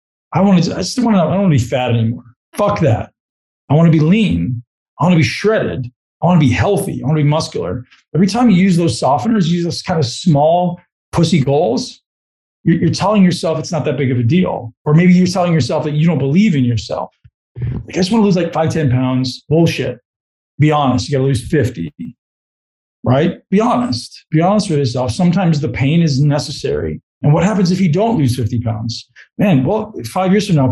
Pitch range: 125-180 Hz